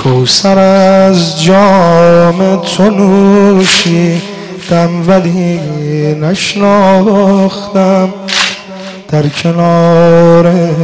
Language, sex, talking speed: Persian, male, 55 wpm